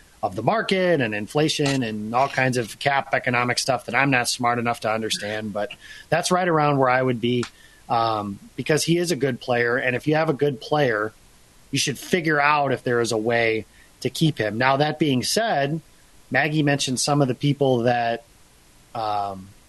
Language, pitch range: English, 120-150 Hz